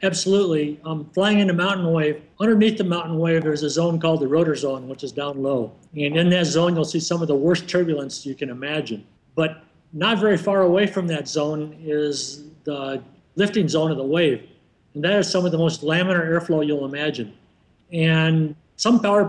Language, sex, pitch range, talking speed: English, male, 145-175 Hz, 200 wpm